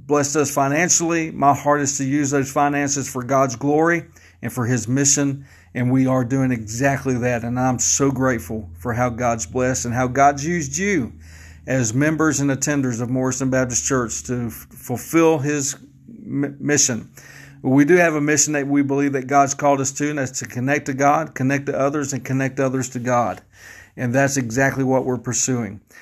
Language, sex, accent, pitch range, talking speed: English, male, American, 125-145 Hz, 195 wpm